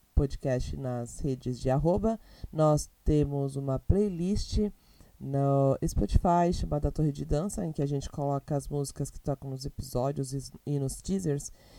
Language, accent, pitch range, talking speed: Portuguese, Brazilian, 140-175 Hz, 150 wpm